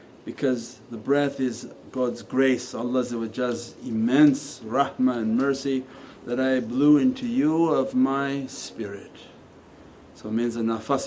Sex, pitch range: male, 120-150 Hz